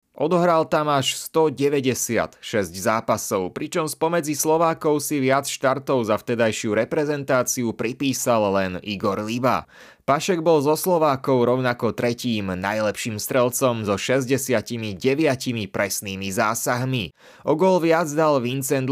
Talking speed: 115 wpm